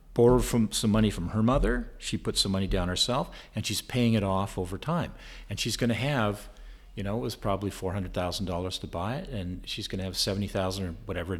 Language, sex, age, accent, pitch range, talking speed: English, male, 50-69, American, 95-115 Hz, 240 wpm